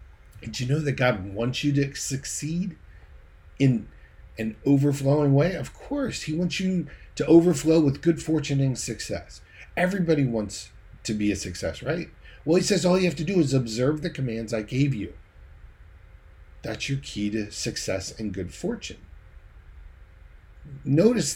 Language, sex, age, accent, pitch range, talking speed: English, male, 40-59, American, 105-165 Hz, 155 wpm